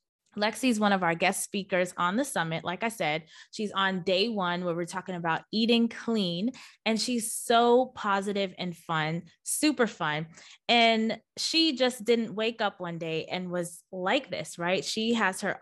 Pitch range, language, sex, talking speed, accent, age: 180-230 Hz, English, female, 175 wpm, American, 20-39